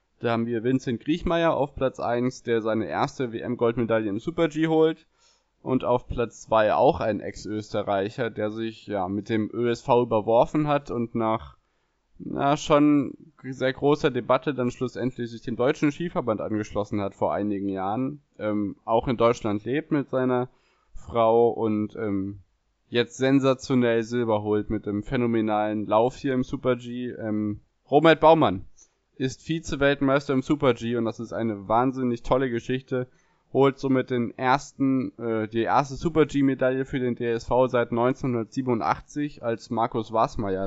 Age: 20-39